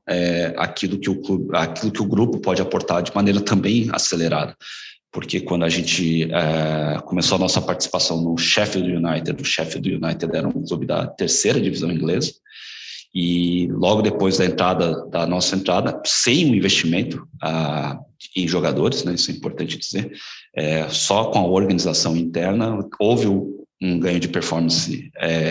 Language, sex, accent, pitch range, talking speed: Portuguese, male, Brazilian, 85-100 Hz, 165 wpm